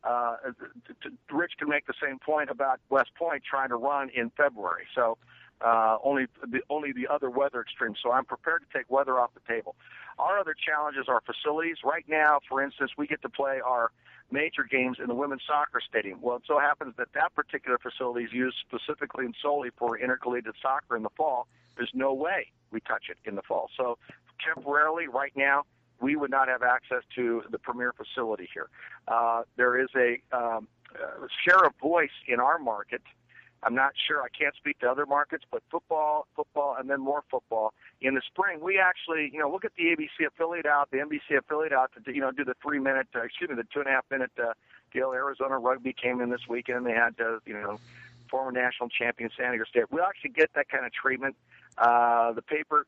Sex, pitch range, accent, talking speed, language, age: male, 125-150 Hz, American, 215 wpm, English, 50-69